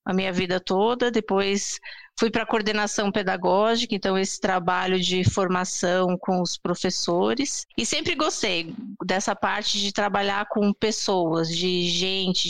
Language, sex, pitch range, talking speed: Portuguese, female, 190-235 Hz, 140 wpm